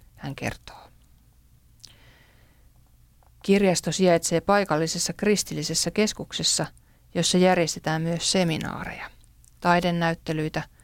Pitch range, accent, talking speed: 155-190 Hz, native, 65 wpm